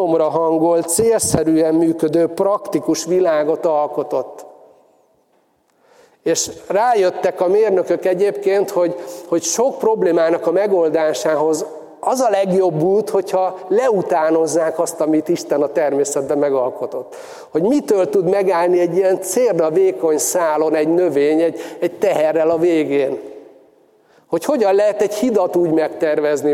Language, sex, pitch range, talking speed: Hungarian, male, 155-195 Hz, 120 wpm